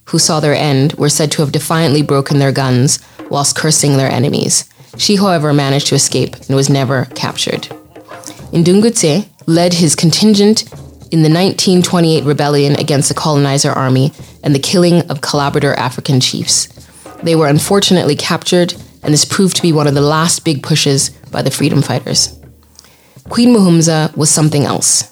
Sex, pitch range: female, 140-170 Hz